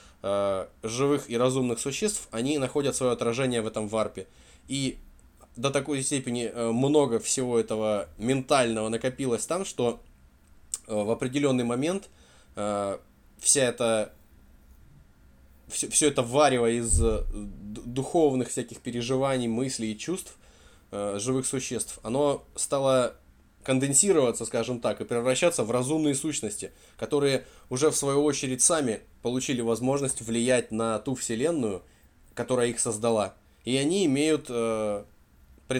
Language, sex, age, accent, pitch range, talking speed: Russian, male, 20-39, native, 105-130 Hz, 115 wpm